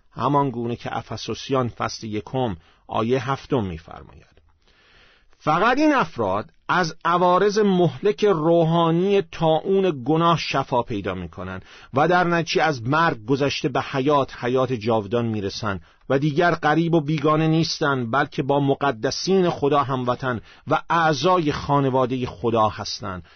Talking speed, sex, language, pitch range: 120 wpm, male, Persian, 115-175 Hz